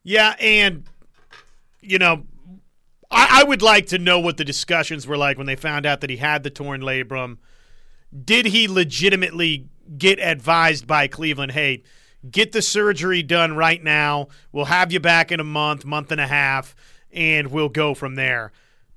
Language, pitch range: English, 145-185 Hz